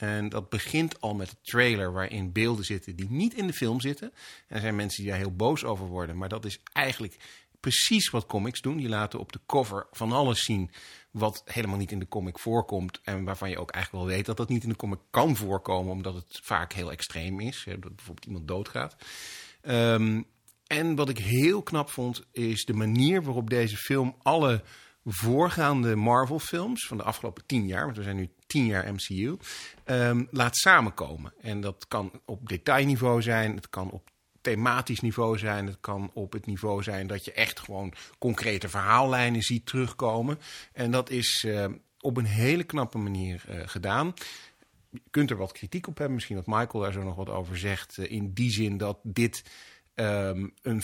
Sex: male